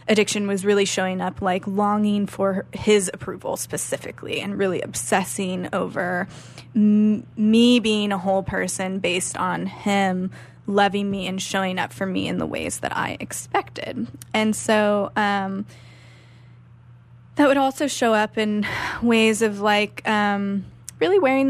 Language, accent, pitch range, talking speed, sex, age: English, American, 190-210 Hz, 140 wpm, female, 10-29